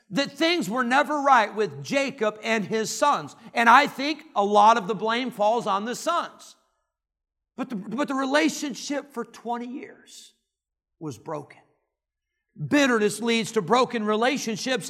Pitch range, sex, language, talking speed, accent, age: 215-315 Hz, male, English, 145 wpm, American, 50-69